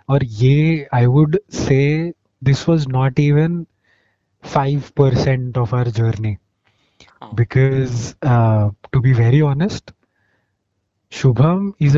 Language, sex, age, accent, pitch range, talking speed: Hindi, male, 20-39, native, 110-135 Hz, 80 wpm